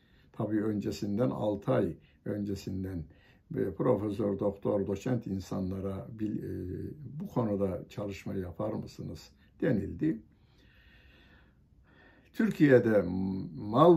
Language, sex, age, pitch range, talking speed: Turkish, male, 60-79, 95-125 Hz, 75 wpm